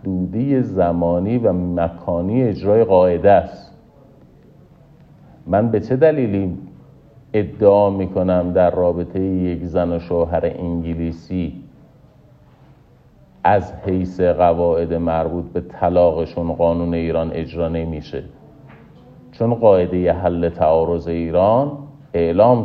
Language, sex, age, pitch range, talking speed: Persian, male, 50-69, 85-105 Hz, 95 wpm